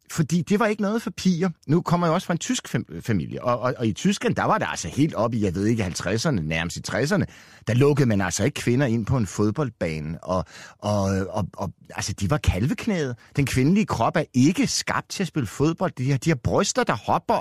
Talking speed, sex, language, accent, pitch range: 240 wpm, male, Danish, native, 115-170 Hz